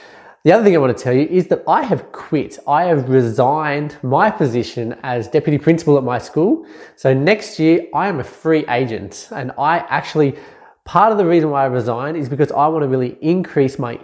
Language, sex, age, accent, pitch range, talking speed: English, male, 20-39, Australian, 130-160 Hz, 215 wpm